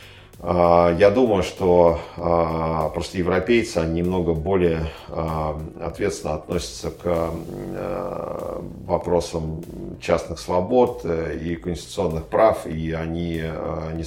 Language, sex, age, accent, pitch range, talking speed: Russian, male, 50-69, native, 80-85 Hz, 85 wpm